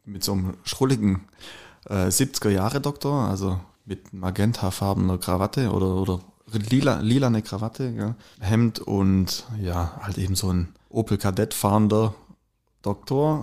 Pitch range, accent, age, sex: 100-115 Hz, German, 30-49, male